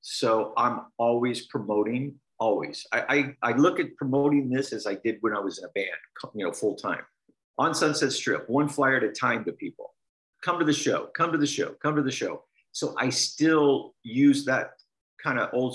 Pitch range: 120-145 Hz